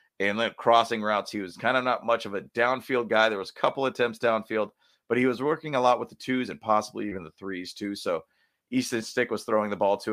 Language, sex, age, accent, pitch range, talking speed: English, male, 30-49, American, 95-125 Hz, 255 wpm